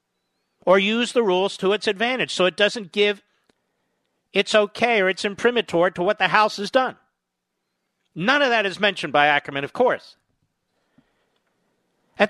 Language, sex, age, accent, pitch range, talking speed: English, male, 50-69, American, 145-205 Hz, 155 wpm